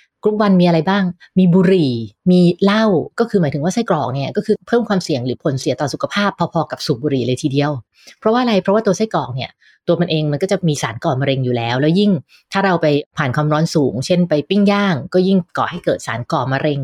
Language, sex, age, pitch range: English, female, 20-39, 145-185 Hz